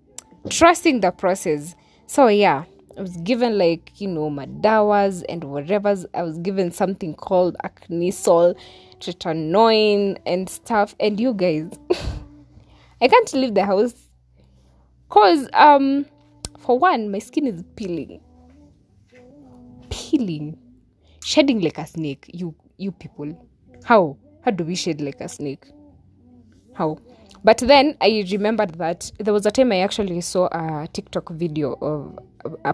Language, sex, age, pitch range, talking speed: English, female, 20-39, 155-215 Hz, 135 wpm